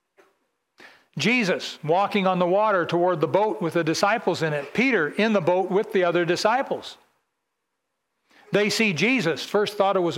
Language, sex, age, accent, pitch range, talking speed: English, male, 60-79, American, 185-250 Hz, 165 wpm